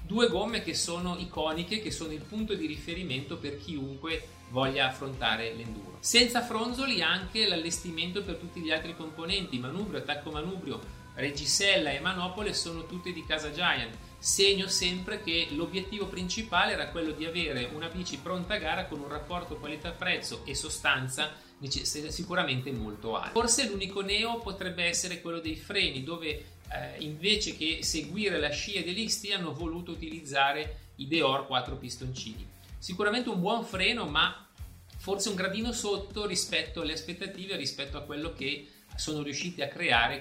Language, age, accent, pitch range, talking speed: Italian, 40-59, native, 135-195 Hz, 155 wpm